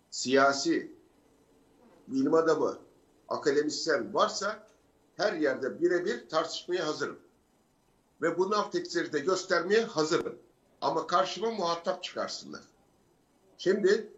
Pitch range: 160-245 Hz